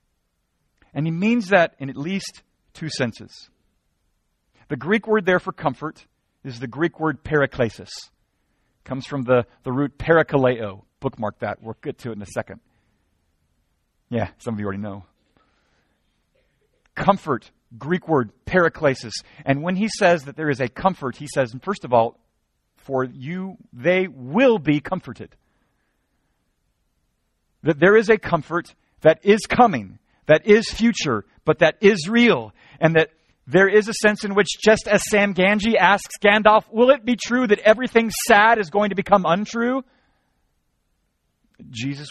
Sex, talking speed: male, 150 wpm